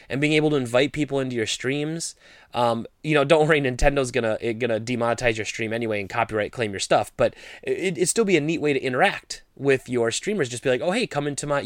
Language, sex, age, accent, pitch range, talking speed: English, male, 20-39, American, 110-150 Hz, 245 wpm